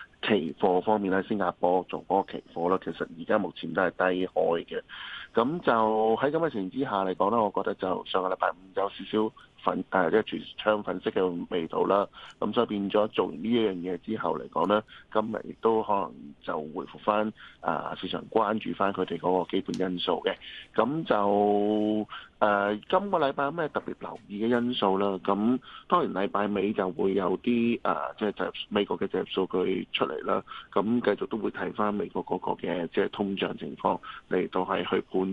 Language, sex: Chinese, male